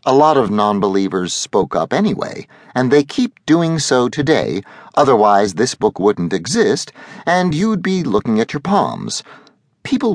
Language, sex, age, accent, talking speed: English, male, 50-69, American, 155 wpm